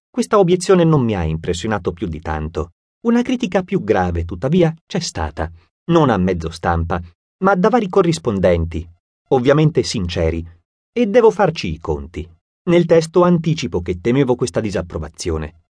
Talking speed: 145 wpm